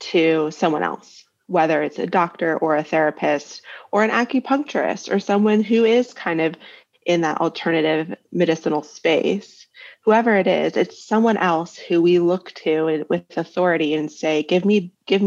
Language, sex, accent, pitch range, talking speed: English, female, American, 160-210 Hz, 160 wpm